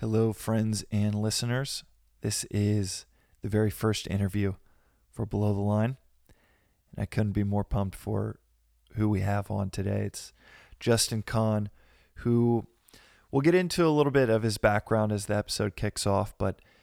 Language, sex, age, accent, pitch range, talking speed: English, male, 20-39, American, 100-115 Hz, 160 wpm